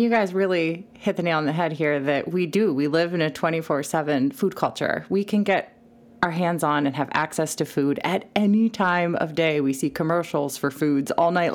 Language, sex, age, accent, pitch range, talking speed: English, female, 30-49, American, 145-210 Hz, 220 wpm